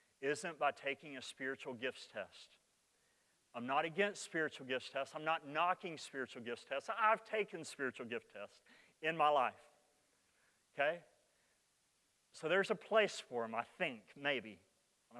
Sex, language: male, English